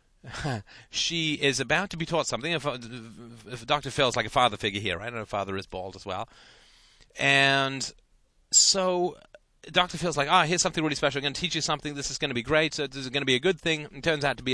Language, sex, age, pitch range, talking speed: English, male, 30-49, 120-160 Hz, 255 wpm